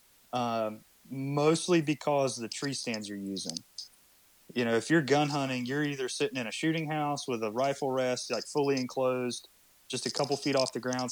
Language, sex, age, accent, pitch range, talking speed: English, male, 30-49, American, 115-135 Hz, 195 wpm